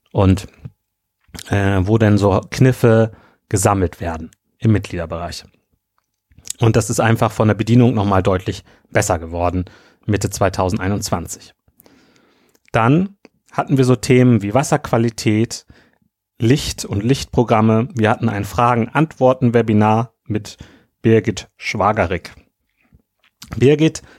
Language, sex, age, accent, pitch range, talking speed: German, male, 30-49, German, 105-125 Hz, 105 wpm